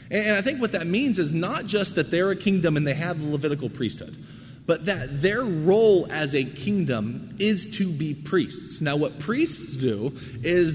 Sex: male